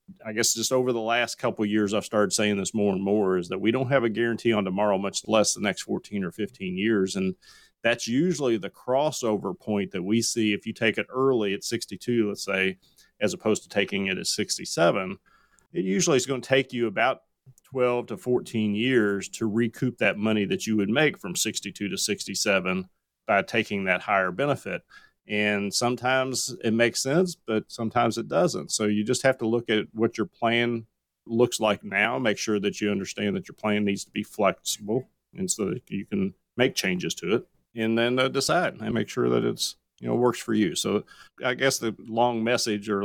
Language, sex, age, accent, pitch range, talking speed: English, male, 30-49, American, 105-120 Hz, 210 wpm